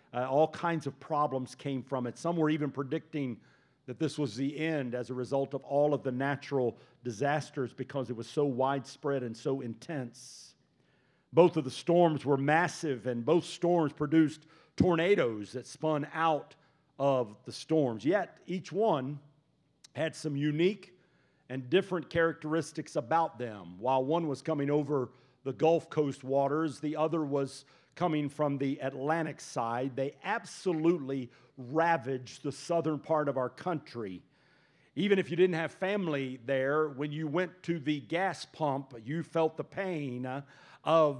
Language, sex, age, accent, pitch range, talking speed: English, male, 50-69, American, 135-165 Hz, 155 wpm